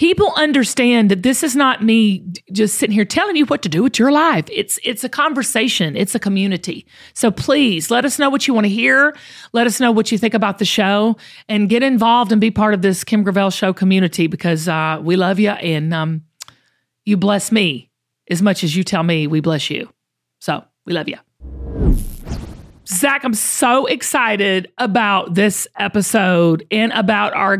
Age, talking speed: 40-59, 195 wpm